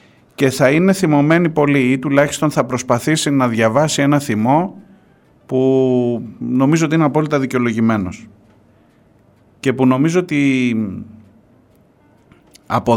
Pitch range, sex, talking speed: 95-140 Hz, male, 110 wpm